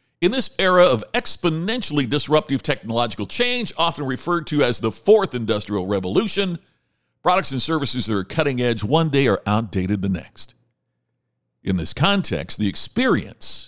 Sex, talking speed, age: male, 150 wpm, 50-69